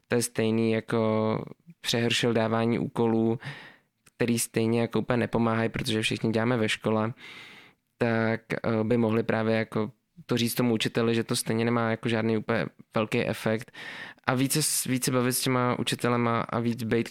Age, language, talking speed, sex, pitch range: 20-39, Czech, 160 wpm, male, 115-125 Hz